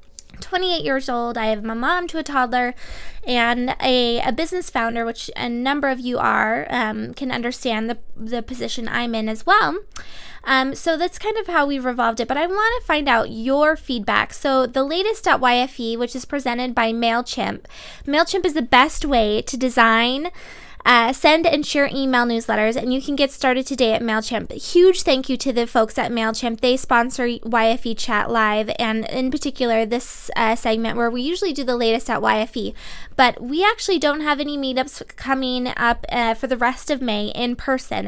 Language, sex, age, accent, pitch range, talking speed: English, female, 10-29, American, 230-280 Hz, 195 wpm